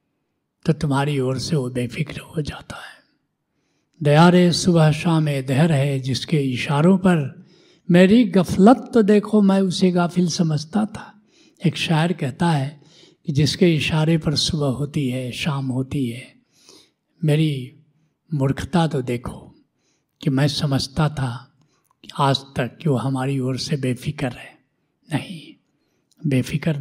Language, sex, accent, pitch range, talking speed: Hindi, male, native, 140-190 Hz, 130 wpm